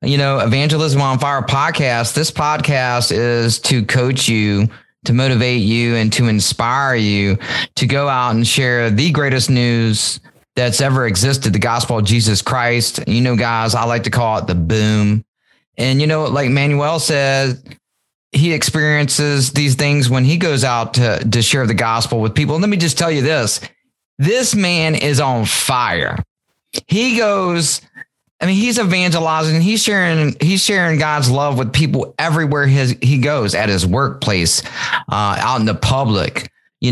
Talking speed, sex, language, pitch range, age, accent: 170 wpm, male, English, 120-150 Hz, 30-49, American